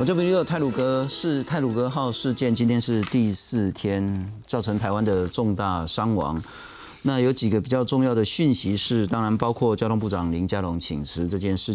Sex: male